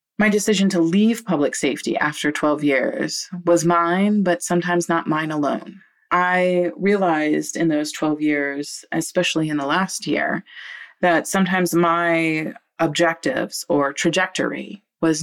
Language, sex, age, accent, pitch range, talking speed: English, female, 30-49, American, 155-180 Hz, 135 wpm